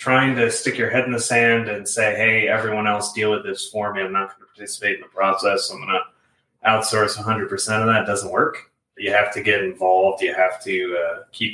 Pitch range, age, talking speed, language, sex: 100-120 Hz, 20-39, 235 wpm, English, male